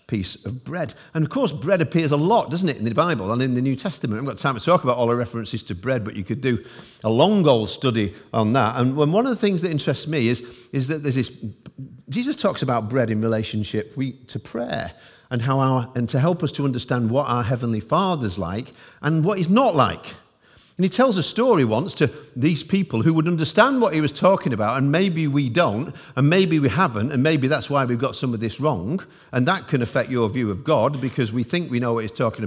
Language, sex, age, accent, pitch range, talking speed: English, male, 50-69, British, 125-180 Hz, 250 wpm